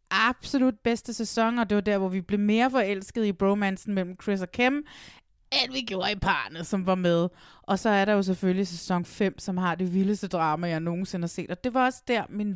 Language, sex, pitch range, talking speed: Danish, female, 180-235 Hz, 235 wpm